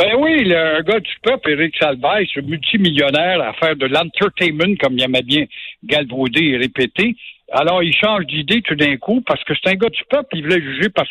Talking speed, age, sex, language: 210 wpm, 60-79, male, French